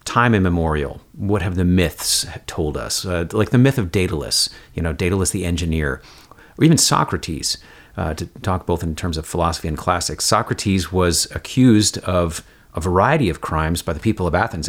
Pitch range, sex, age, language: 85-110 Hz, male, 40-59, English